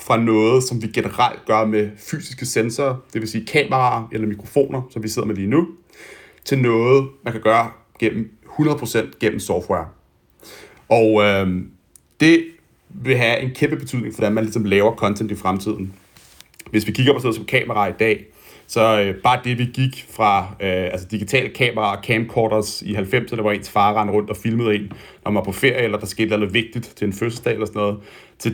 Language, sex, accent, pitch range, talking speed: Danish, male, native, 105-125 Hz, 200 wpm